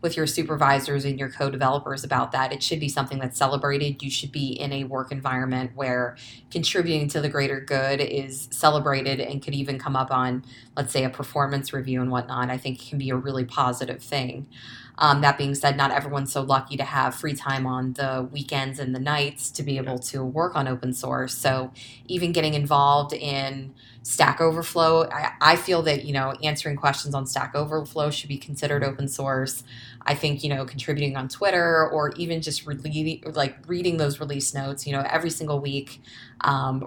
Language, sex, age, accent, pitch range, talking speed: English, female, 20-39, American, 130-145 Hz, 200 wpm